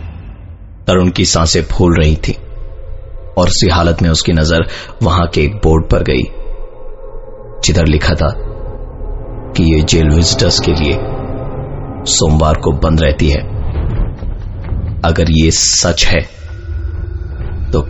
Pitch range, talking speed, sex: 75-95 Hz, 125 wpm, male